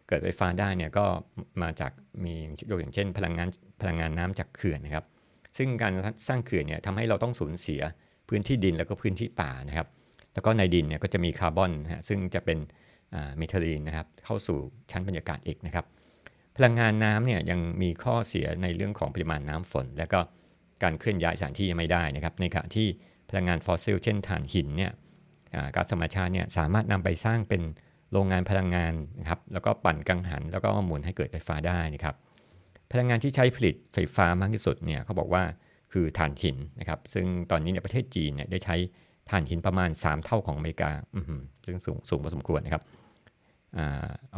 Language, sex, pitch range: Thai, male, 80-100 Hz